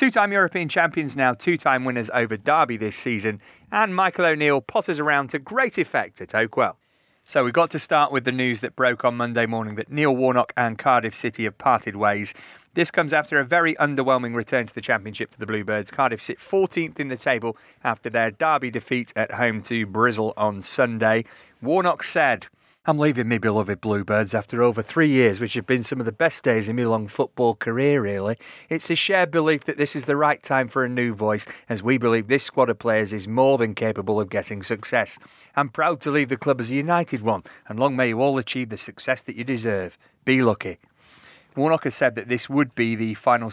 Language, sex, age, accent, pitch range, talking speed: English, male, 30-49, British, 115-150 Hz, 215 wpm